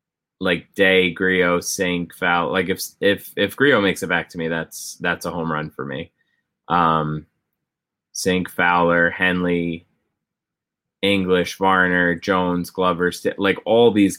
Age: 20-39